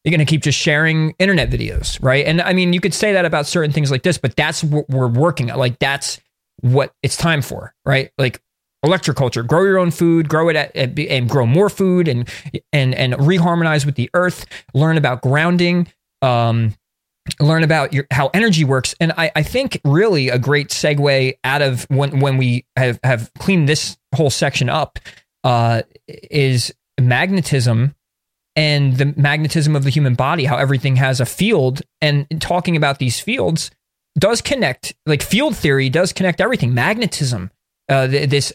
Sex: male